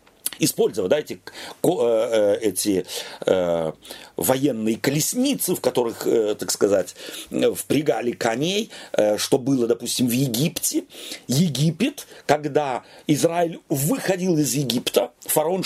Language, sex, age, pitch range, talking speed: Russian, male, 40-59, 150-220 Hz, 105 wpm